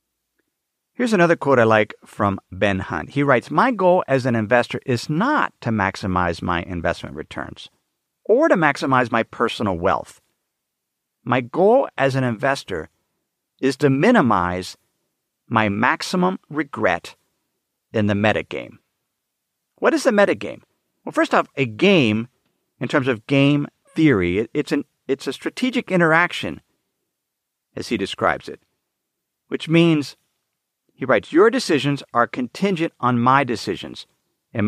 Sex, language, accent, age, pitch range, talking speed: male, English, American, 50-69, 115-170 Hz, 140 wpm